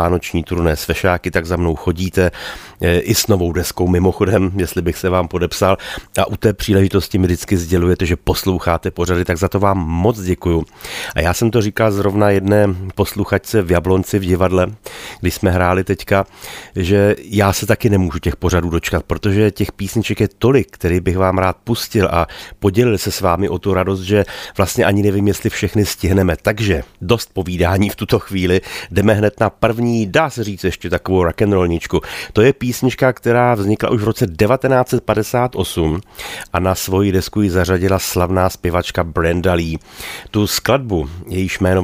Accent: native